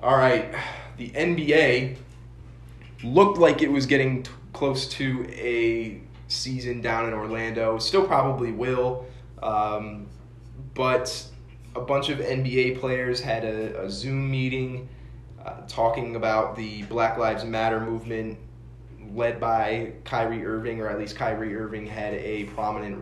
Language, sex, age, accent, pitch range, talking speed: English, male, 20-39, American, 105-120 Hz, 135 wpm